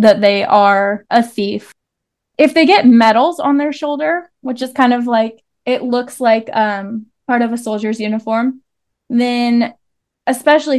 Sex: female